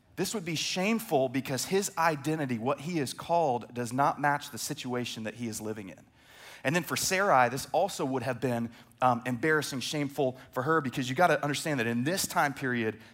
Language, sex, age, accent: English, male, 30-49, American